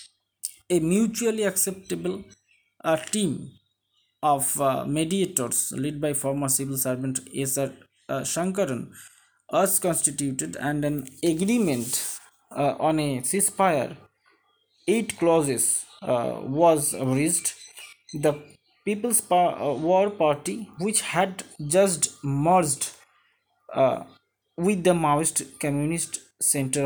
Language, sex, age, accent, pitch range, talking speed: Bengali, male, 20-39, native, 140-200 Hz, 105 wpm